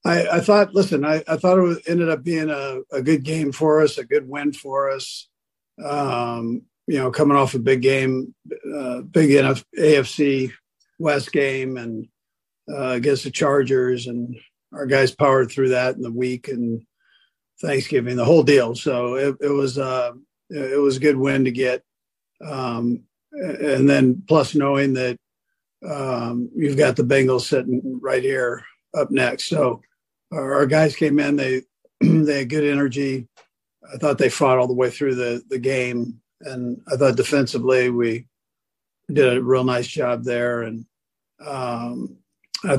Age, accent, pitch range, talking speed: 50-69, American, 125-145 Hz, 170 wpm